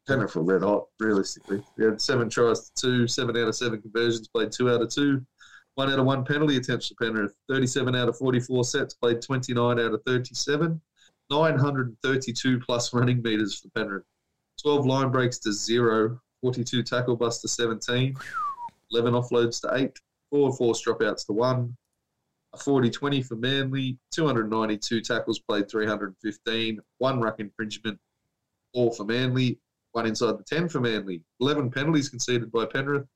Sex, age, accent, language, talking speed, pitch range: male, 20-39, Australian, English, 165 wpm, 115-135 Hz